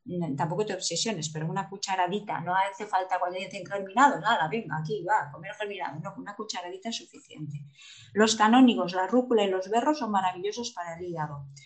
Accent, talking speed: Spanish, 180 wpm